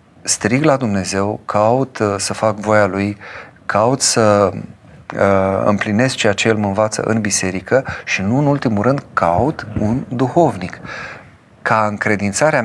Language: Romanian